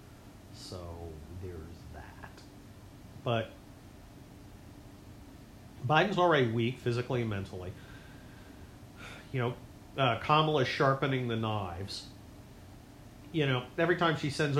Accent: American